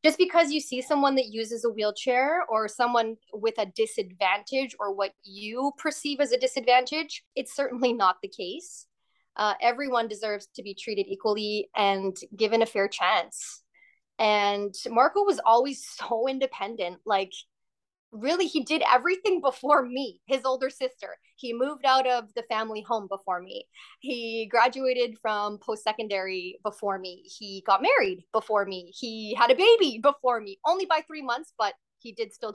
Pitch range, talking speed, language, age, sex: 205-265 Hz, 165 wpm, English, 20-39, female